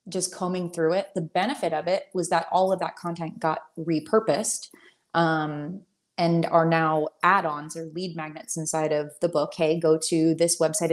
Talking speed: 180 wpm